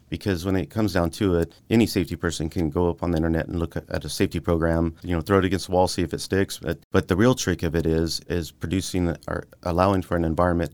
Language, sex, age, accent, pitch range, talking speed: English, male, 30-49, American, 80-95 Hz, 270 wpm